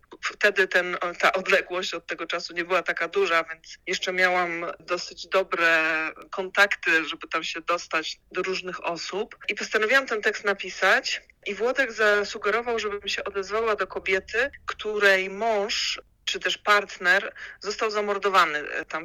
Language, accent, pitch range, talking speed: Polish, native, 175-205 Hz, 140 wpm